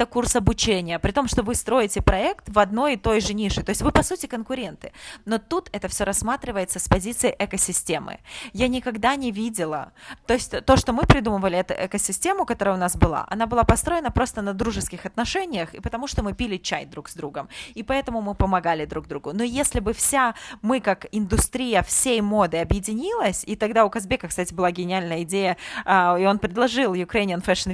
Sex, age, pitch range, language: female, 20-39, 185-240 Hz, Russian